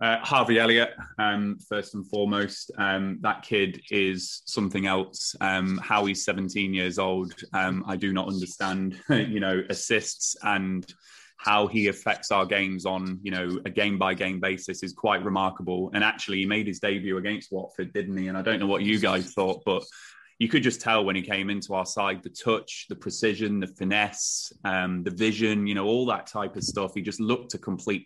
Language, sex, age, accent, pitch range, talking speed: English, male, 20-39, British, 95-105 Hz, 195 wpm